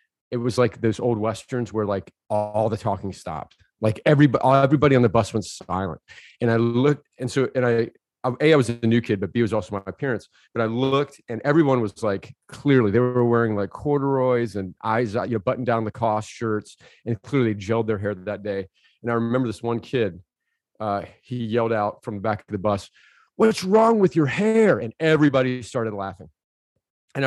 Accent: American